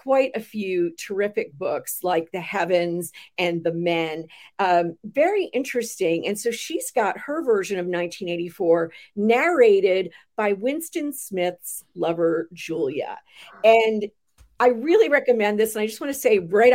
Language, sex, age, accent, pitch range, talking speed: English, female, 50-69, American, 175-245 Hz, 145 wpm